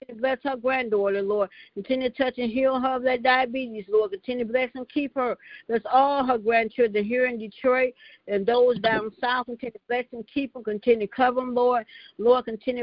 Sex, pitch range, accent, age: female, 225-255 Hz, American, 60-79